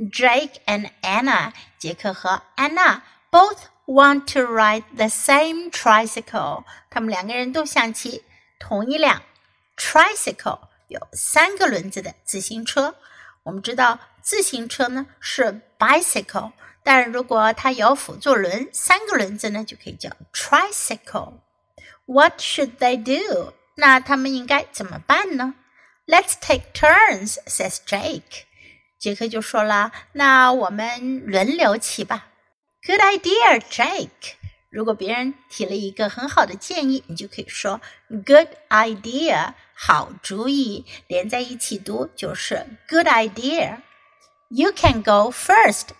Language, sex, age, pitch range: Chinese, female, 60-79, 220-300 Hz